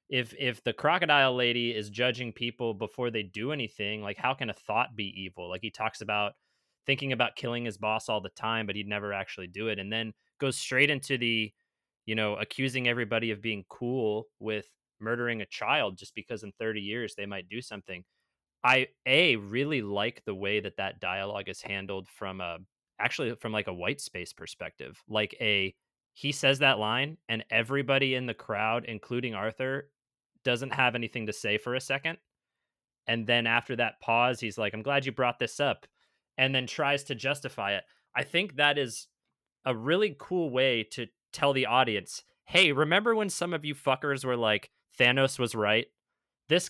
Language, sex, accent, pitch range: English, male, American, 105-135 Hz